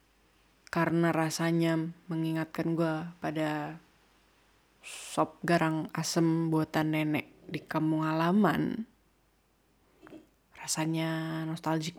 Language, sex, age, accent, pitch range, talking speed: Indonesian, female, 20-39, native, 160-190 Hz, 70 wpm